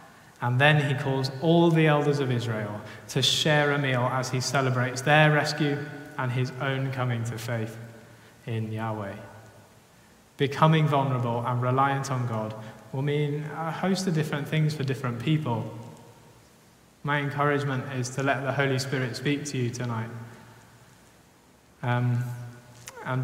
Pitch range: 120-155 Hz